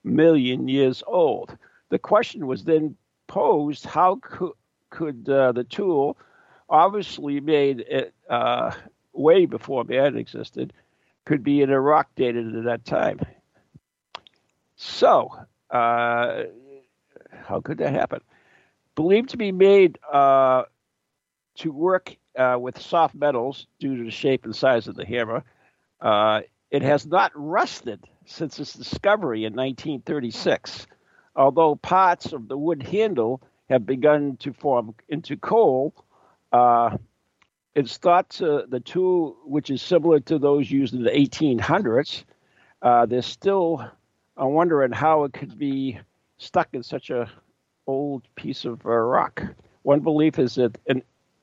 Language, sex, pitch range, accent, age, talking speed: English, male, 125-155 Hz, American, 60-79, 135 wpm